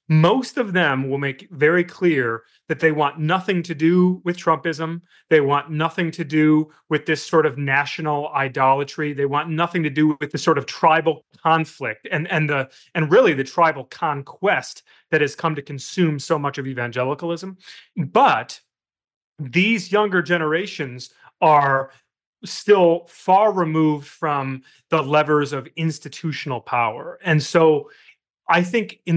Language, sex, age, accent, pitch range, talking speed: English, male, 30-49, American, 140-170 Hz, 150 wpm